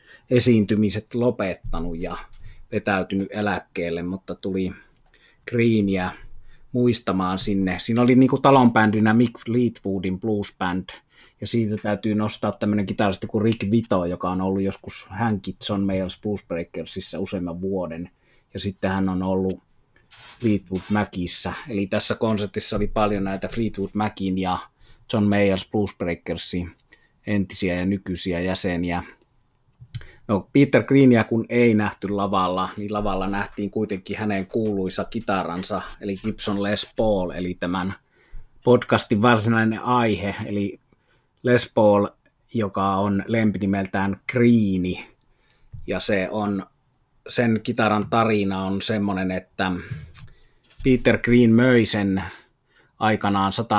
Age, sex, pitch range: 30-49, male, 95-115 Hz